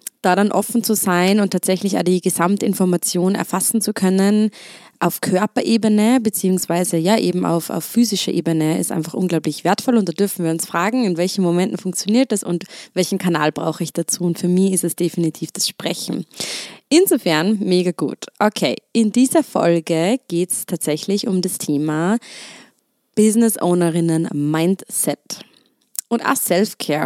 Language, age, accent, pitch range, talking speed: German, 20-39, German, 165-210 Hz, 155 wpm